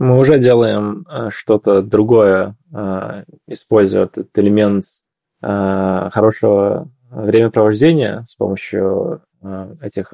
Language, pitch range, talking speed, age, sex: Russian, 95-105 Hz, 75 wpm, 20-39, male